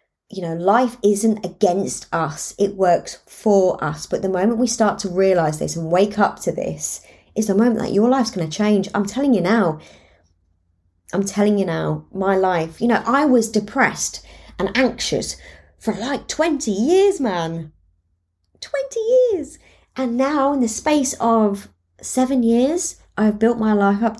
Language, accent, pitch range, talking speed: English, British, 150-210 Hz, 170 wpm